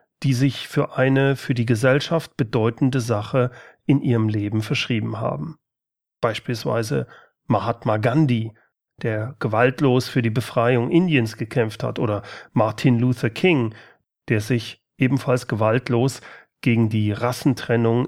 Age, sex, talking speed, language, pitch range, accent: 40-59, male, 120 wpm, German, 115-145 Hz, German